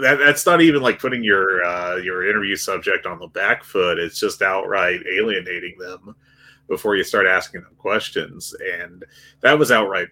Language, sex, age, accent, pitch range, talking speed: English, male, 30-49, American, 110-155 Hz, 180 wpm